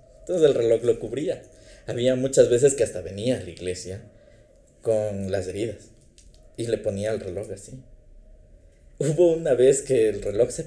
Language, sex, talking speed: Spanish, male, 170 wpm